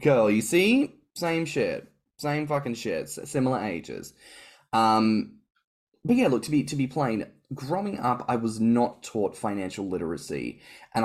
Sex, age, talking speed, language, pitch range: male, 10-29, 150 wpm, English, 100-140 Hz